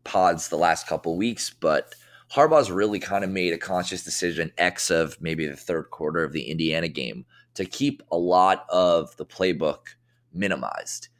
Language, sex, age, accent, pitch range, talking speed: English, male, 20-39, American, 85-110 Hz, 170 wpm